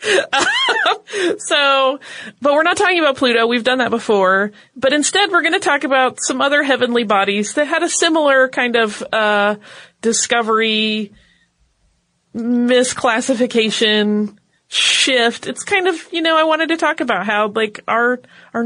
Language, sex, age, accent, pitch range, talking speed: English, female, 30-49, American, 200-255 Hz, 145 wpm